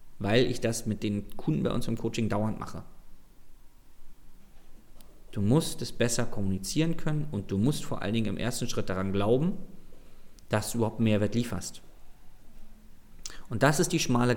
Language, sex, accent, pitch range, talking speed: German, male, German, 105-145 Hz, 165 wpm